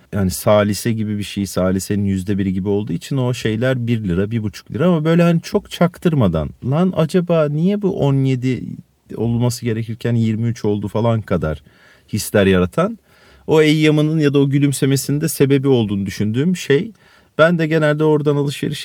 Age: 40-59